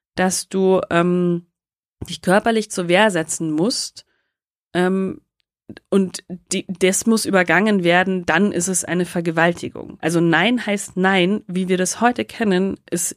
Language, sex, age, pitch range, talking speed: German, female, 30-49, 170-205 Hz, 140 wpm